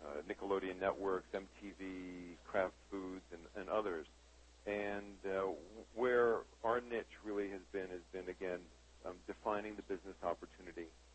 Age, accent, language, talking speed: 50-69, American, English, 130 wpm